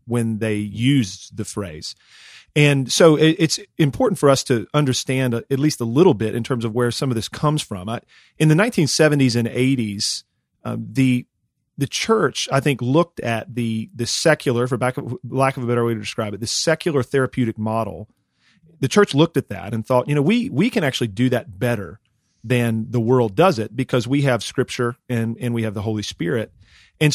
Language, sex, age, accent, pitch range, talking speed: English, male, 40-59, American, 115-150 Hz, 205 wpm